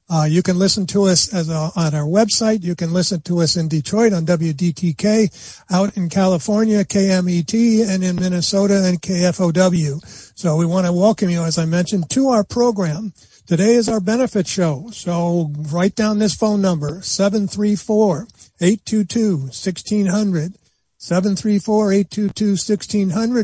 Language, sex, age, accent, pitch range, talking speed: English, male, 50-69, American, 170-205 Hz, 140 wpm